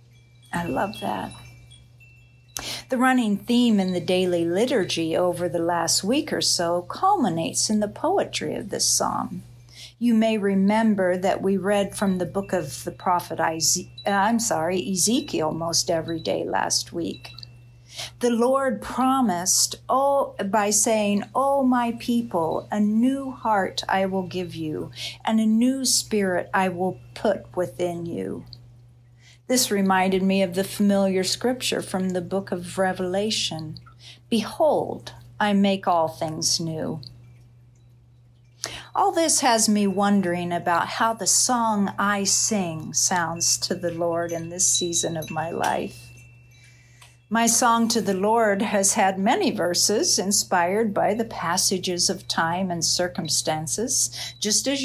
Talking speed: 135 wpm